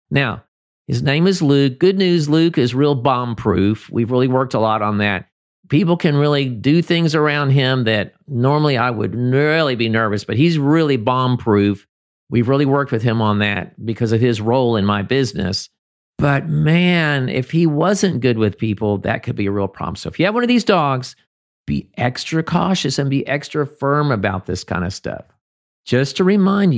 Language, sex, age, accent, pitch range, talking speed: English, male, 50-69, American, 105-150 Hz, 195 wpm